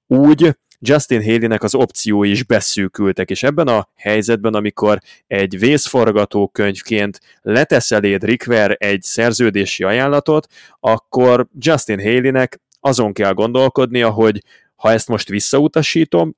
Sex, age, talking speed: male, 20-39, 115 wpm